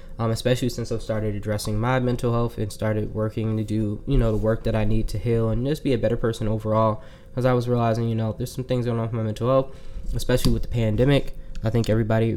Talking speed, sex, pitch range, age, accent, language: 250 wpm, male, 110-125 Hz, 10-29, American, English